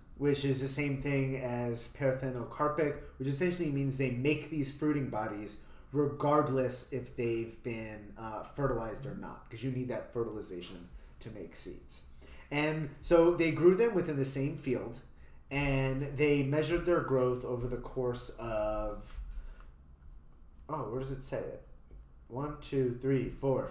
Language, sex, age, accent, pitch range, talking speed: English, male, 30-49, American, 90-150 Hz, 150 wpm